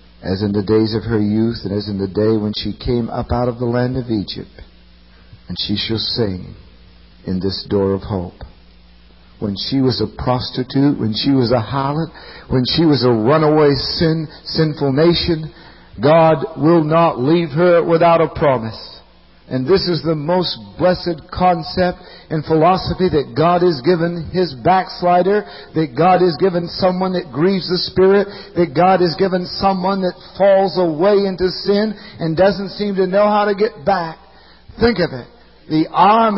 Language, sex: English, male